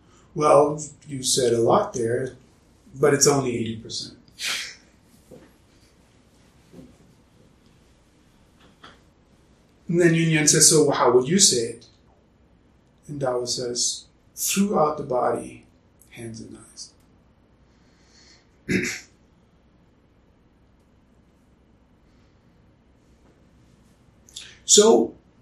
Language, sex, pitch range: English, male, 115-160 Hz